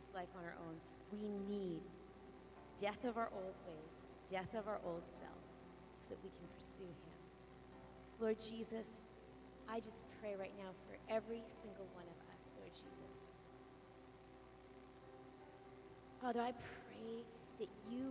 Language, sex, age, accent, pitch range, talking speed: English, female, 30-49, American, 135-225 Hz, 140 wpm